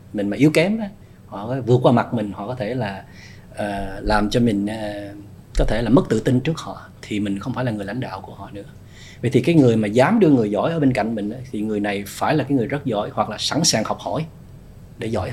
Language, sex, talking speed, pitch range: Vietnamese, male, 260 wpm, 105-140 Hz